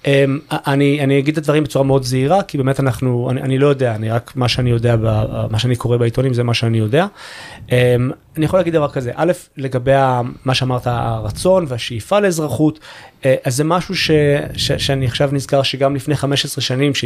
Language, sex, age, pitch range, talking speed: Hebrew, male, 30-49, 120-145 Hz, 170 wpm